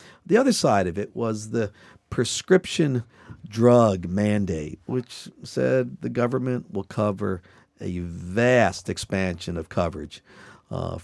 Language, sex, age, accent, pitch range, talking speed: English, male, 50-69, American, 95-130 Hz, 120 wpm